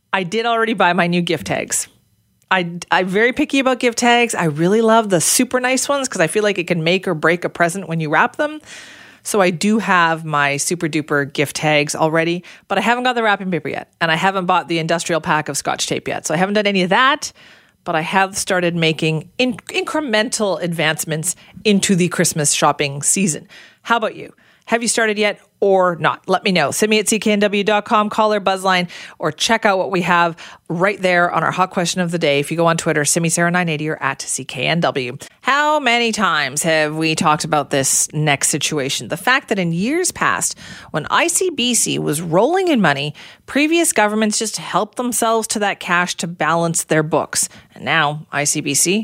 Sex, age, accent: female, 40-59, American